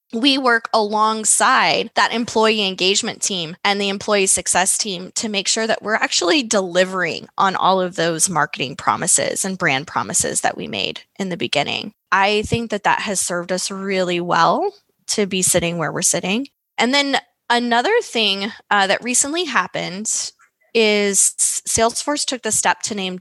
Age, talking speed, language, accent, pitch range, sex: 20-39, 165 wpm, English, American, 175-210 Hz, female